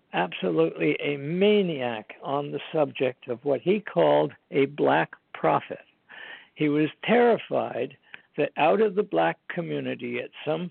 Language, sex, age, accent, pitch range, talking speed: English, male, 60-79, American, 125-160 Hz, 135 wpm